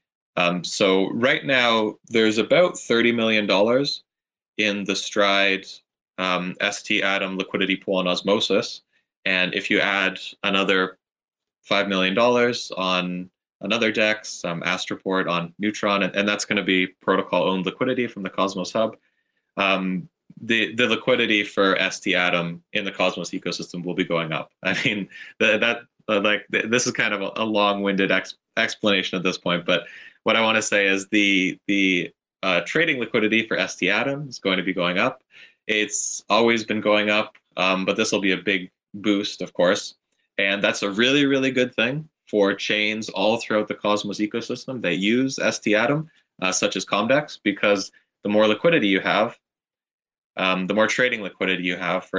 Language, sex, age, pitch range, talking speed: English, male, 20-39, 95-110 Hz, 170 wpm